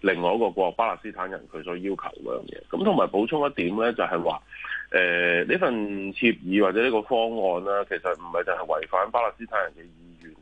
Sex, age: male, 30-49